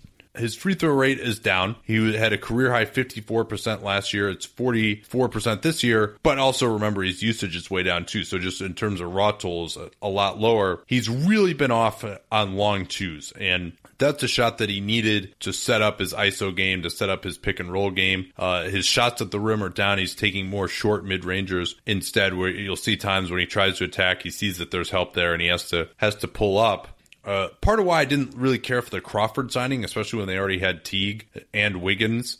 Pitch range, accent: 95-125 Hz, American